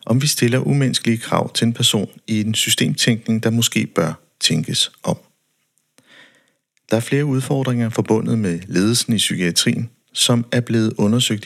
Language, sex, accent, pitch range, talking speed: Danish, male, native, 100-120 Hz, 150 wpm